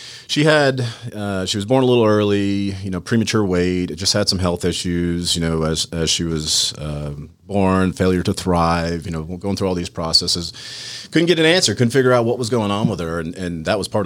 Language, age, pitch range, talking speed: English, 40-59, 85-120 Hz, 230 wpm